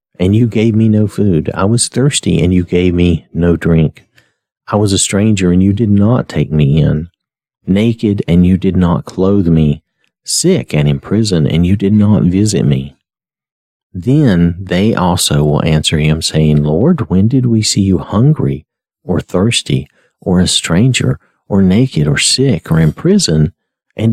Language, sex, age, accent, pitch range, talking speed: English, male, 50-69, American, 80-115 Hz, 175 wpm